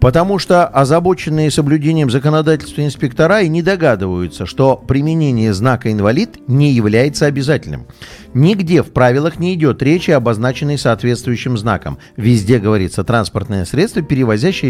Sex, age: male, 50-69